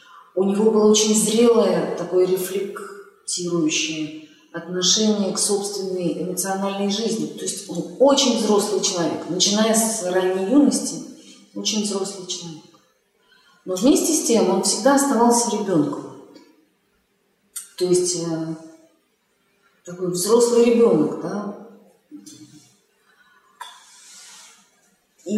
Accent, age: native, 30-49